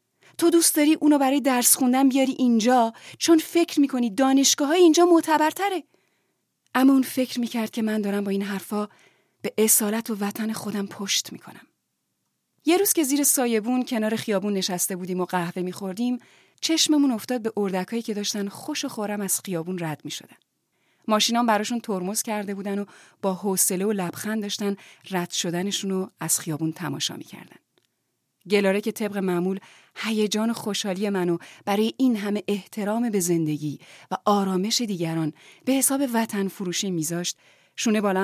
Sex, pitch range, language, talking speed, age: female, 185-245 Hz, Persian, 150 wpm, 30-49